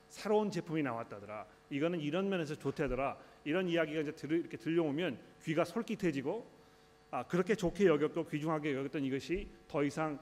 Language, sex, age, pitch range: Korean, male, 40-59, 145-185 Hz